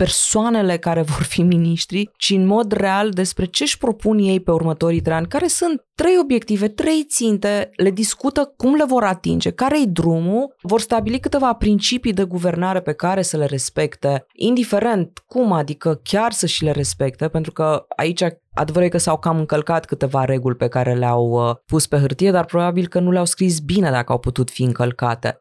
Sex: female